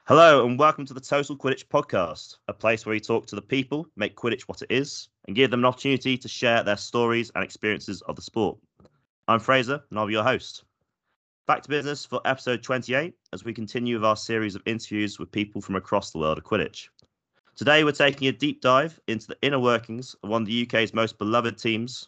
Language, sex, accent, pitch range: English, male, British, 100-130 Hz